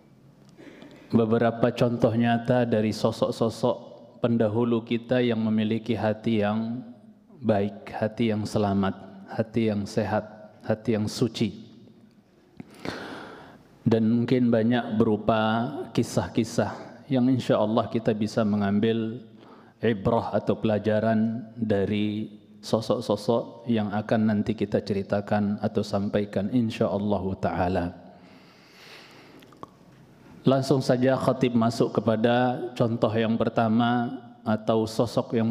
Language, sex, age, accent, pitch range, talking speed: Indonesian, male, 20-39, native, 110-130 Hz, 100 wpm